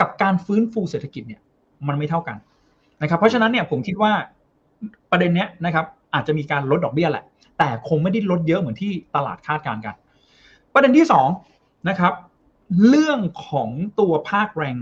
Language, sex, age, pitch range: Thai, male, 20-39, 150-205 Hz